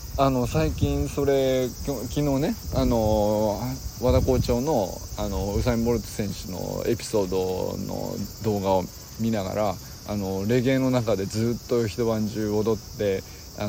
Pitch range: 95-140 Hz